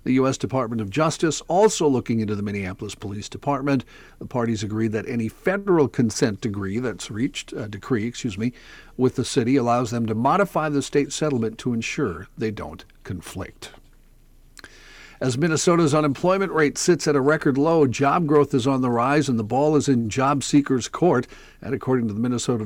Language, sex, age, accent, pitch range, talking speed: English, male, 50-69, American, 115-140 Hz, 185 wpm